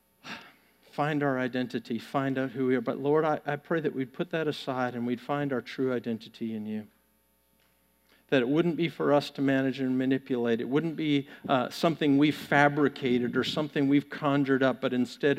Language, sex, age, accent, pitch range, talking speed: English, male, 50-69, American, 120-155 Hz, 195 wpm